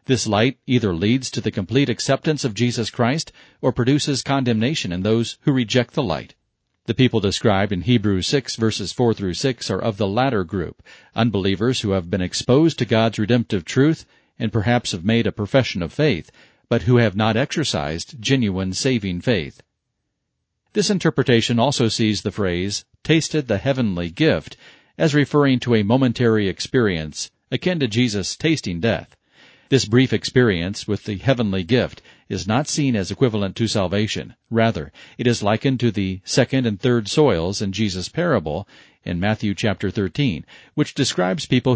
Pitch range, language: 100-130 Hz, English